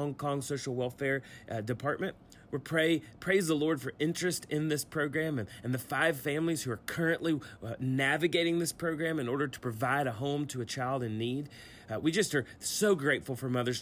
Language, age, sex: English, 30-49, male